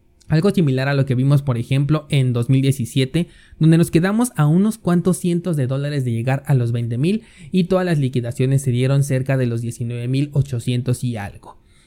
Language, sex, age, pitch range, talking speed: Spanish, male, 30-49, 130-160 Hz, 180 wpm